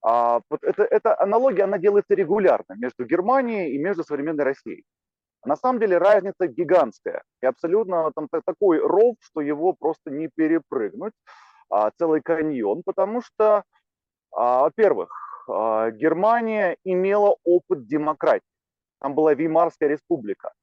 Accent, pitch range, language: native, 150-225 Hz, Russian